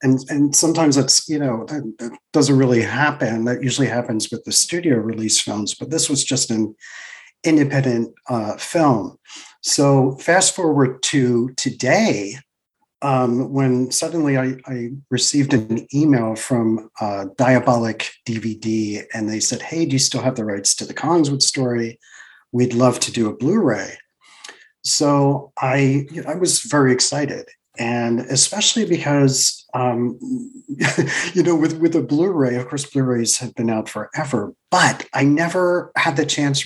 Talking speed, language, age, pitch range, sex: 150 wpm, English, 40-59, 120-145 Hz, male